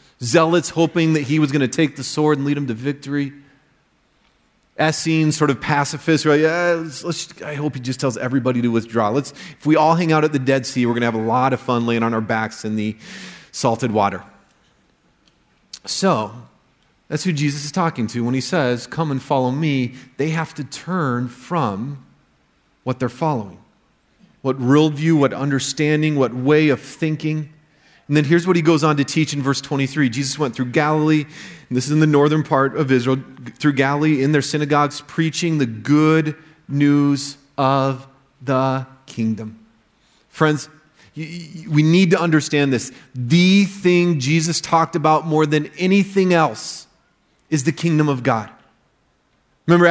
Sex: male